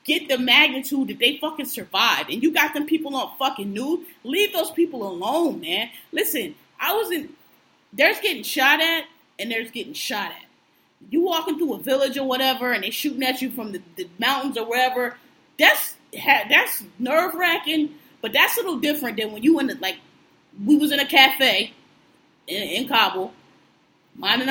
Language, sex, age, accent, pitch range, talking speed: English, female, 20-39, American, 245-315 Hz, 175 wpm